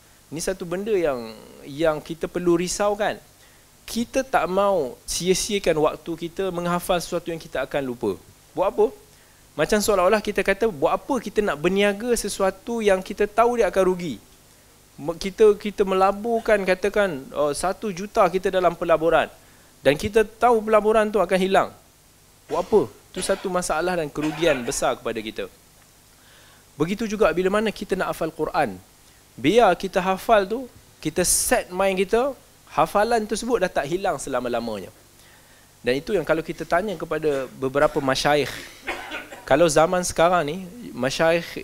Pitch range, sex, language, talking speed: 140-200 Hz, male, Malay, 145 wpm